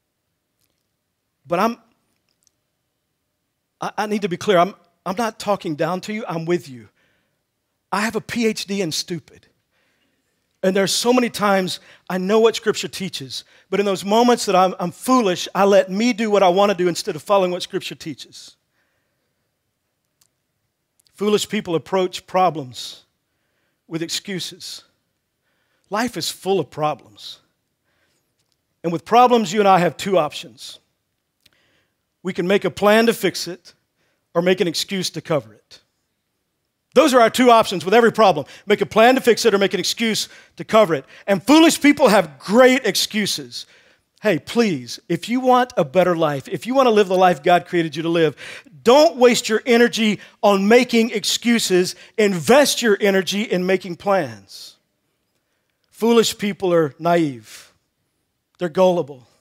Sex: male